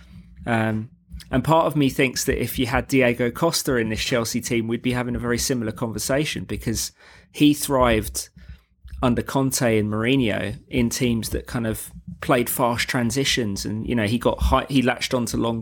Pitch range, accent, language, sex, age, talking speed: 110-130 Hz, British, English, male, 20-39, 185 wpm